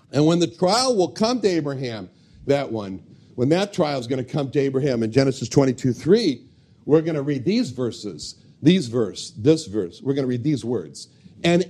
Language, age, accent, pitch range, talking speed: English, 50-69, American, 130-190 Hz, 205 wpm